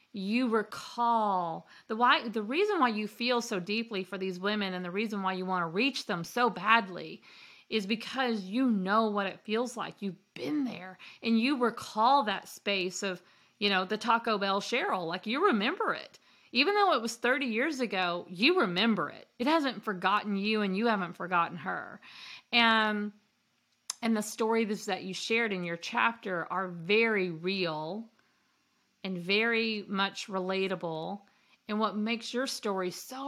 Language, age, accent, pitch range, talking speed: English, 40-59, American, 190-235 Hz, 170 wpm